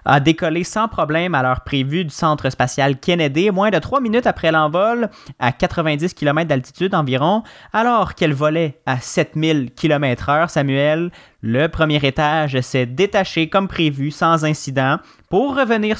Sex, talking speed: male, 155 wpm